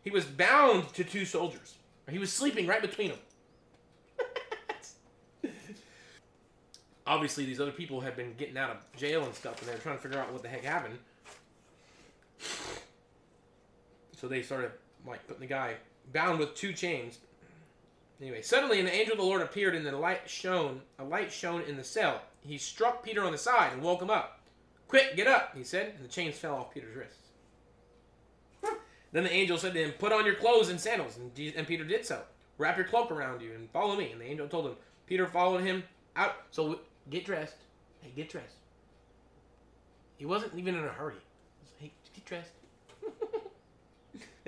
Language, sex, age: English, male, 30-49